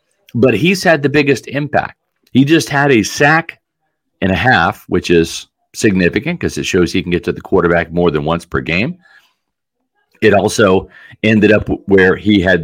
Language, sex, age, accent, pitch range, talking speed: English, male, 40-59, American, 105-165 Hz, 180 wpm